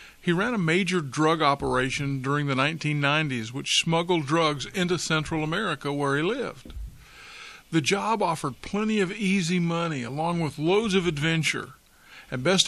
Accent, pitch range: American, 135-175 Hz